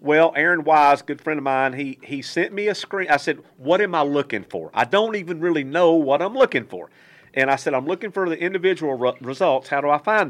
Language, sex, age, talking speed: English, male, 50-69, 250 wpm